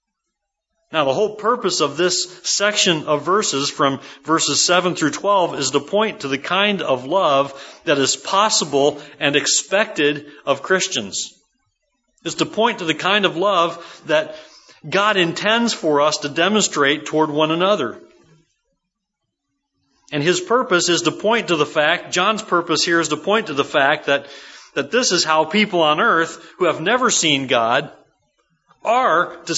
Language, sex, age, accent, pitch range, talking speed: English, male, 40-59, American, 140-190 Hz, 160 wpm